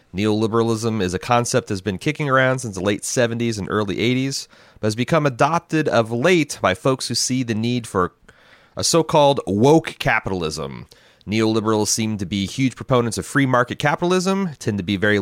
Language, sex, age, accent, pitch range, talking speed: English, male, 30-49, American, 105-135 Hz, 180 wpm